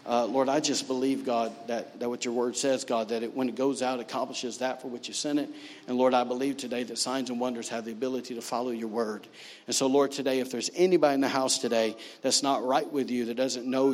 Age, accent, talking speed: 50-69, American, 265 wpm